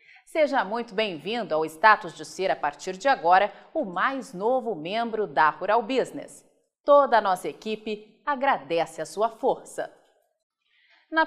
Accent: Brazilian